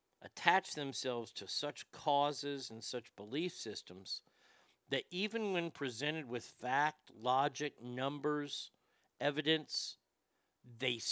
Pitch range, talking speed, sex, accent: 140-200 Hz, 105 wpm, male, American